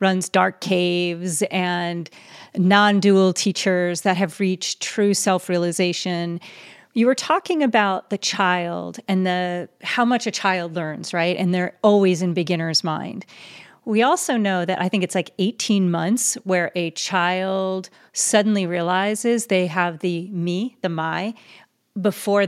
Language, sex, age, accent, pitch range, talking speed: English, female, 40-59, American, 175-205 Hz, 140 wpm